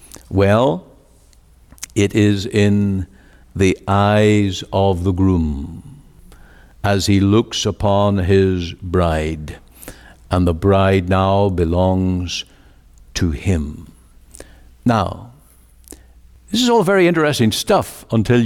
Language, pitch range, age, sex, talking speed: English, 85-135 Hz, 60-79, male, 100 wpm